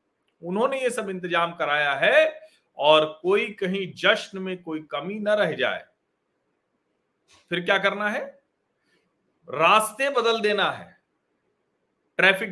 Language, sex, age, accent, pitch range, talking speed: Hindi, male, 40-59, native, 170-245 Hz, 120 wpm